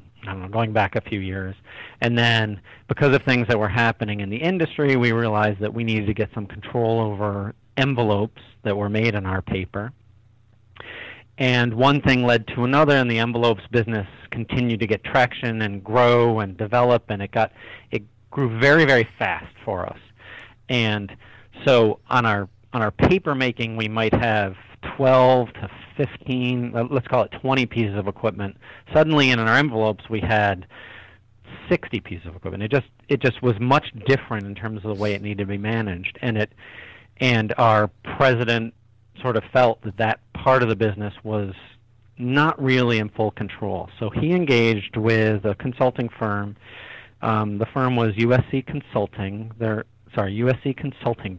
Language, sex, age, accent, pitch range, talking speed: English, male, 40-59, American, 105-125 Hz, 175 wpm